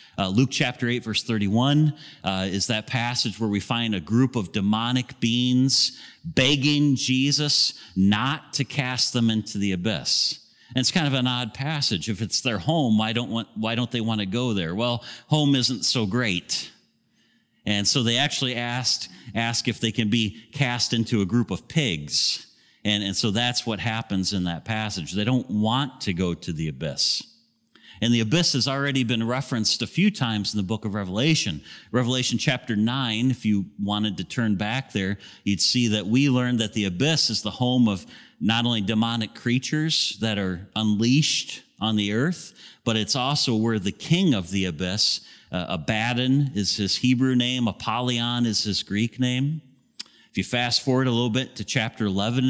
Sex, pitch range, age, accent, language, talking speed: male, 105-130 Hz, 40-59, American, English, 185 wpm